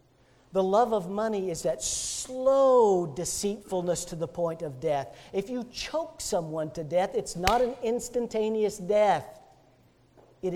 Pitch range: 170-260 Hz